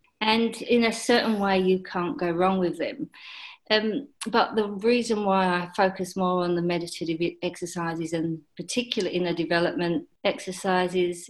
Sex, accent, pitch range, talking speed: female, British, 175-210 Hz, 150 wpm